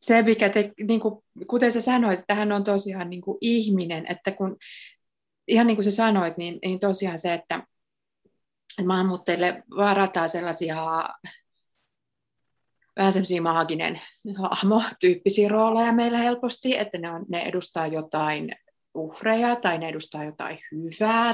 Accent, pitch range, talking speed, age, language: native, 170-215 Hz, 130 wpm, 30-49, Finnish